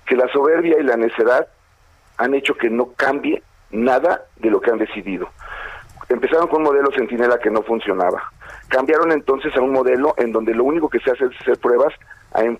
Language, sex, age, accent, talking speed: Spanish, male, 40-59, Mexican, 195 wpm